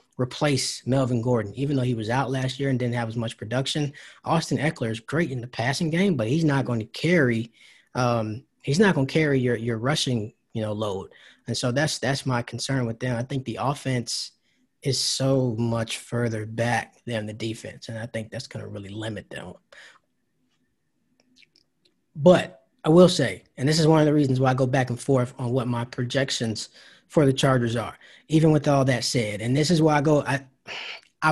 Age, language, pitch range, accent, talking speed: 20-39, English, 120-155 Hz, American, 210 wpm